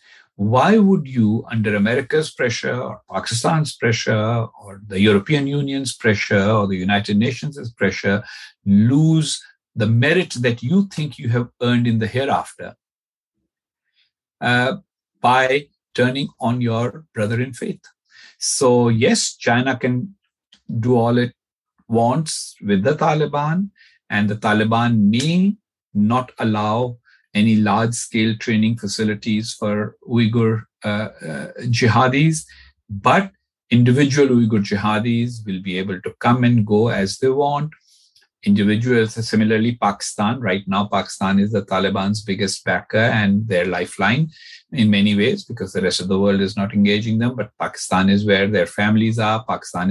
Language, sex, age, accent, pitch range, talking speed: English, male, 50-69, Indian, 100-125 Hz, 135 wpm